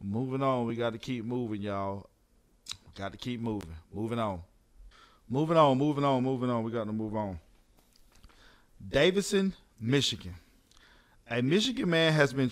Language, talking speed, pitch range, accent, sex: English, 155 wpm, 115-150 Hz, American, male